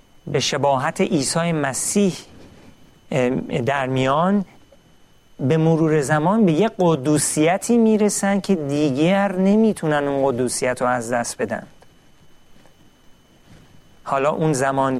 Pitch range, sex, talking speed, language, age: 135-185 Hz, male, 100 wpm, Persian, 40-59